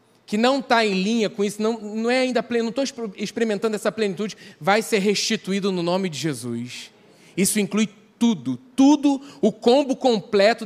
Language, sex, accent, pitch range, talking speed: Portuguese, male, Brazilian, 190-235 Hz, 180 wpm